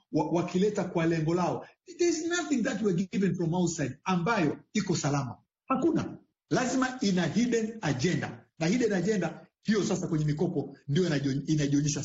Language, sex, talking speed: Swahili, male, 150 wpm